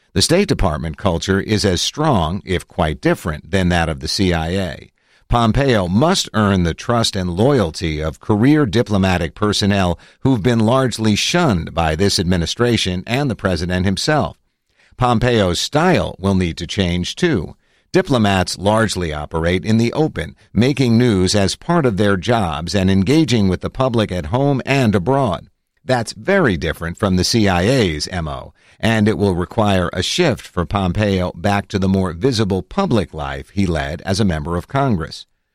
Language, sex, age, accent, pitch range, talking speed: English, male, 50-69, American, 90-115 Hz, 160 wpm